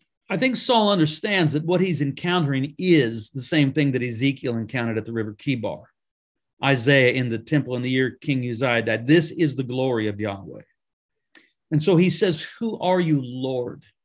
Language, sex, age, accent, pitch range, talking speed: English, male, 50-69, American, 125-165 Hz, 185 wpm